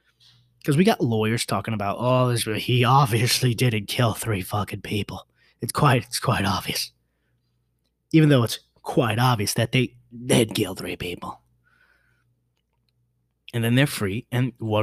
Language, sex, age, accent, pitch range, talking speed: English, male, 20-39, American, 95-125 Hz, 155 wpm